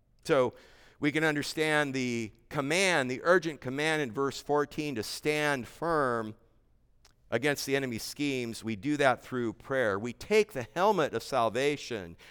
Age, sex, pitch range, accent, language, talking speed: 50-69, male, 130-170 Hz, American, English, 145 wpm